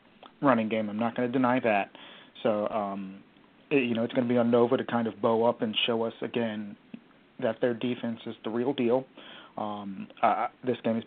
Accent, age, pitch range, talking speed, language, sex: American, 40-59, 105-120 Hz, 215 wpm, English, male